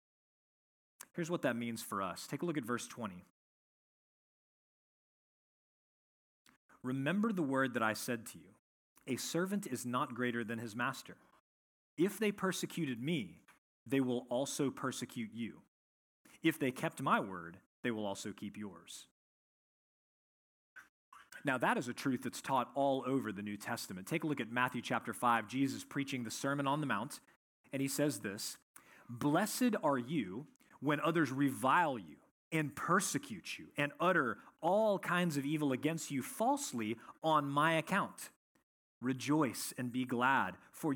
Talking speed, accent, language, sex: 150 wpm, American, English, male